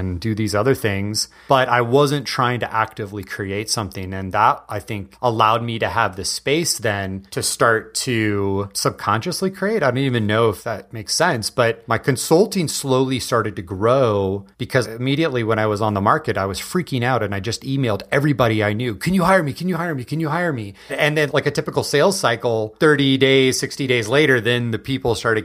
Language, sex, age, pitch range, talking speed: English, male, 30-49, 110-150 Hz, 215 wpm